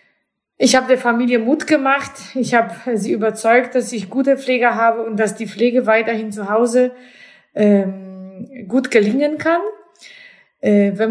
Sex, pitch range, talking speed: female, 205-250 Hz, 140 wpm